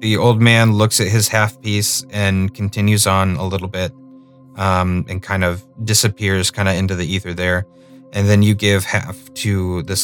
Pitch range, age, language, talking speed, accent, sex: 95-130 Hz, 30-49, English, 190 wpm, American, male